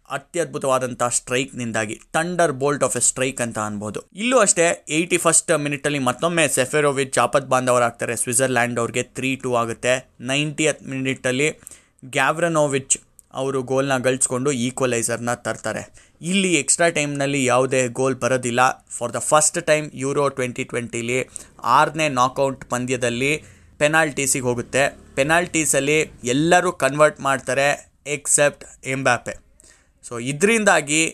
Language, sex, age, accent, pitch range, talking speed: Kannada, male, 20-39, native, 125-155 Hz, 115 wpm